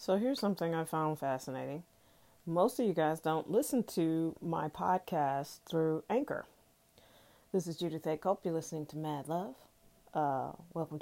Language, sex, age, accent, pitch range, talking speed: English, female, 40-59, American, 145-165 Hz, 160 wpm